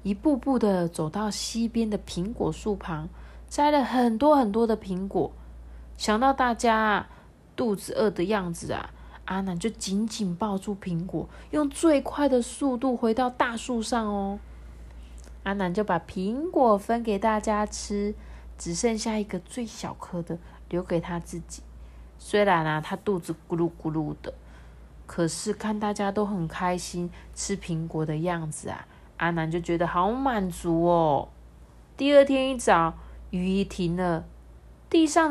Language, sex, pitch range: Chinese, female, 160-220 Hz